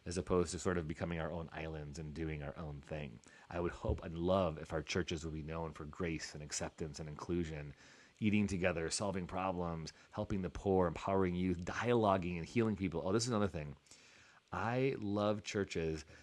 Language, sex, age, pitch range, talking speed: English, male, 30-49, 80-95 Hz, 190 wpm